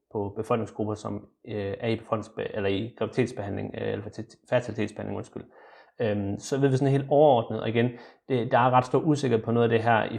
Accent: native